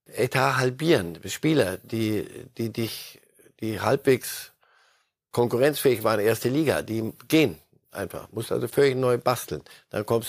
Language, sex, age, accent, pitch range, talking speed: German, male, 50-69, German, 110-145 Hz, 130 wpm